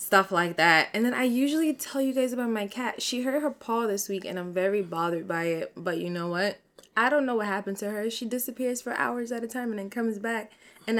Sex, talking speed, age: female, 260 wpm, 20-39